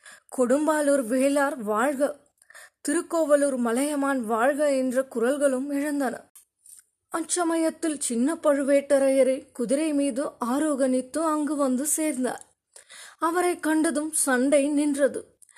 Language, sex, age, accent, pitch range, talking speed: Tamil, female, 20-39, native, 270-300 Hz, 80 wpm